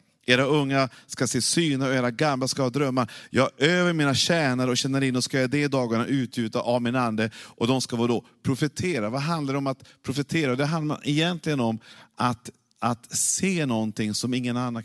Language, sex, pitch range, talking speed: Swedish, male, 125-150 Hz, 200 wpm